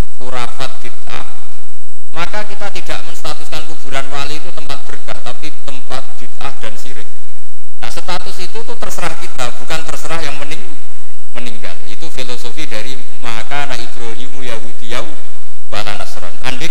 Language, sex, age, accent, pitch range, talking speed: Indonesian, male, 50-69, native, 120-155 Hz, 110 wpm